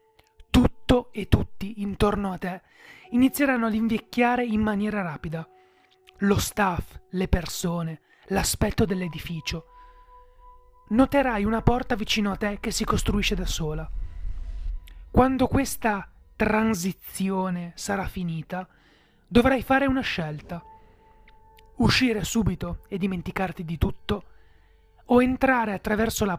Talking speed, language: 105 wpm, Italian